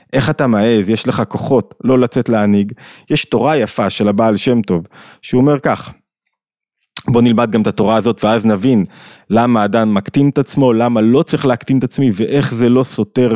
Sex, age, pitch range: male, 20-39, 110-155 Hz